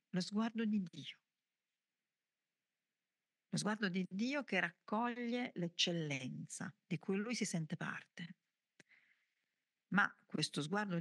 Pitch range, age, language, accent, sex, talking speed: 160-215 Hz, 50-69, Italian, native, female, 110 wpm